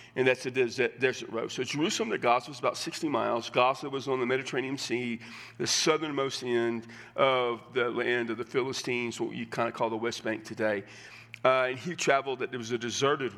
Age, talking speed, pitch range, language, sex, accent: 40-59, 205 wpm, 115-140 Hz, English, male, American